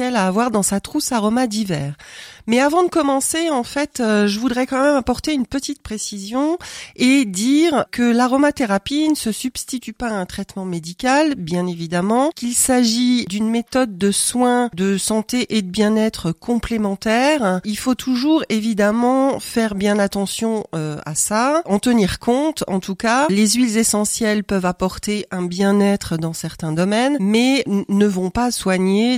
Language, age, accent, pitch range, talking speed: French, 40-59, French, 195-255 Hz, 165 wpm